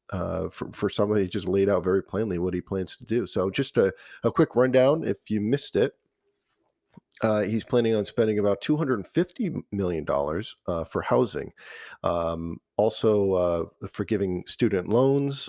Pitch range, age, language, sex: 90-110 Hz, 40-59, English, male